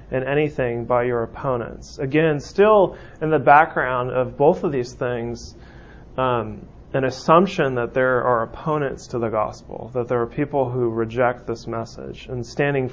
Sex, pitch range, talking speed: male, 125-155 Hz, 165 wpm